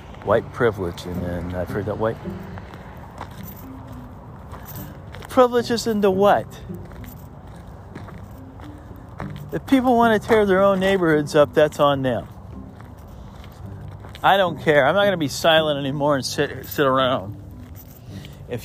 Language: English